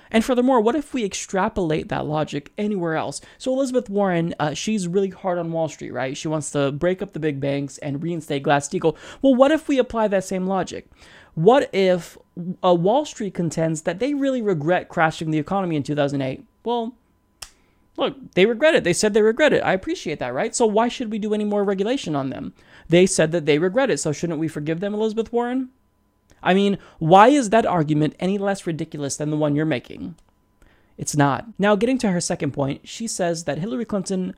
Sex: male